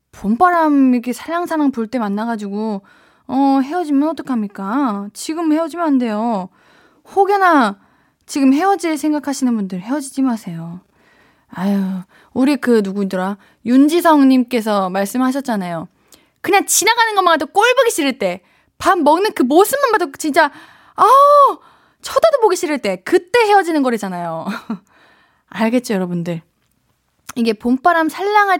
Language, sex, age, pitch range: Korean, female, 20-39, 205-310 Hz